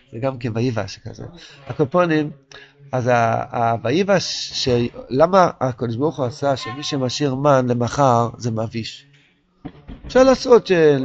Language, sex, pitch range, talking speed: Hebrew, male, 120-175 Hz, 135 wpm